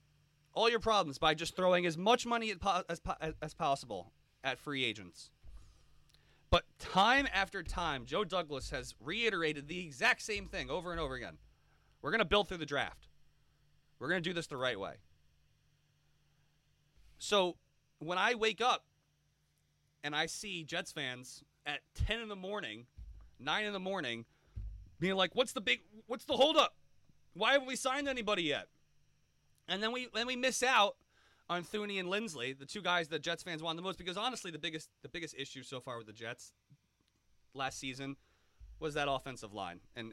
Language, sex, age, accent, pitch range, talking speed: English, male, 30-49, American, 120-185 Hz, 180 wpm